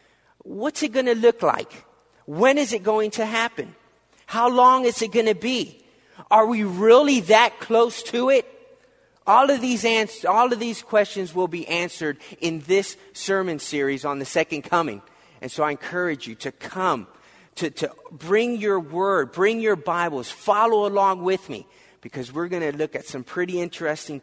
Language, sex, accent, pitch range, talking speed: English, male, American, 145-210 Hz, 180 wpm